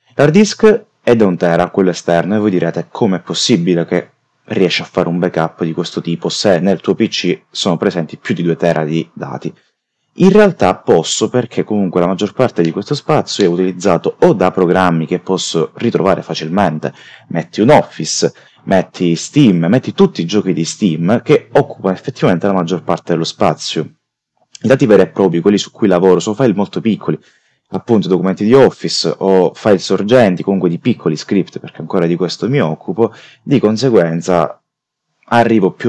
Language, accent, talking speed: Italian, native, 180 wpm